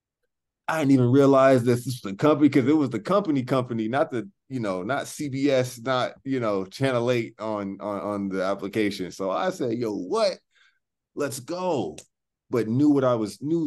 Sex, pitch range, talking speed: male, 95-130 Hz, 190 wpm